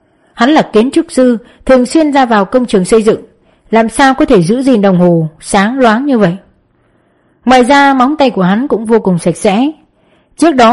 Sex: female